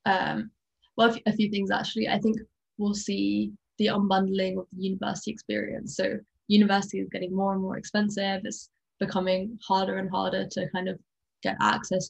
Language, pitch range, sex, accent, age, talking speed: English, 190-215 Hz, female, British, 10-29, 175 wpm